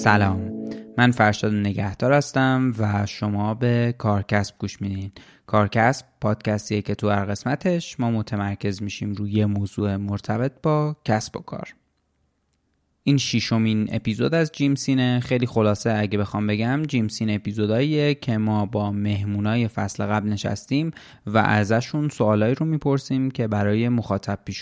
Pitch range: 105-125 Hz